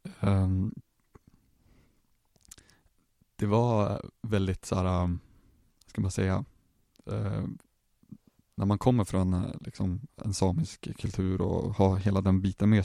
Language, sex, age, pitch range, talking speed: Swedish, male, 20-39, 95-105 Hz, 95 wpm